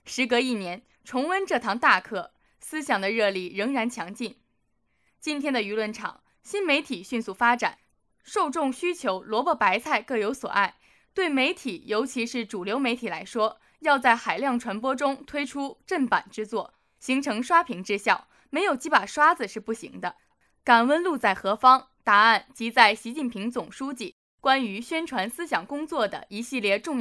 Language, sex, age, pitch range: Chinese, female, 20-39, 210-280 Hz